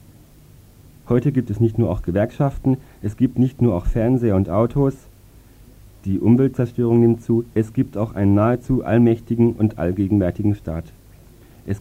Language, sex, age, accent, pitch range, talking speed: German, male, 40-59, German, 100-115 Hz, 145 wpm